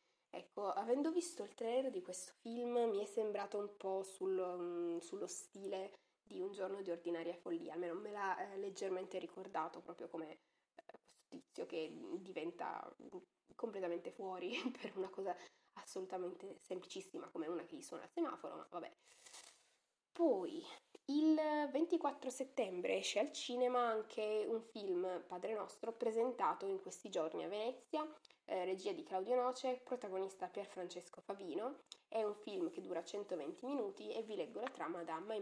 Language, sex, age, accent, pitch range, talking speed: Italian, female, 20-39, native, 185-255 Hz, 150 wpm